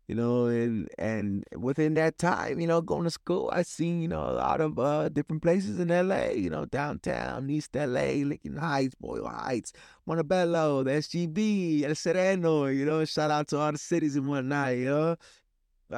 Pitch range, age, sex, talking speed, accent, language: 130-160 Hz, 20-39, male, 190 wpm, American, English